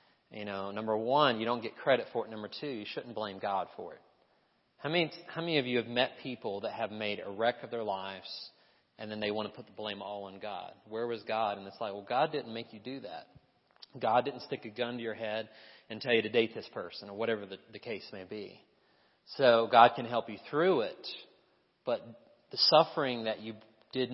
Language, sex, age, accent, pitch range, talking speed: English, male, 30-49, American, 105-130 Hz, 230 wpm